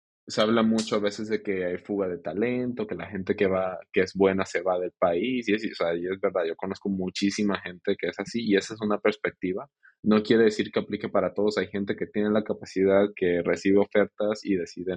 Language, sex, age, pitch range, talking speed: Spanish, male, 20-39, 95-105 Hz, 235 wpm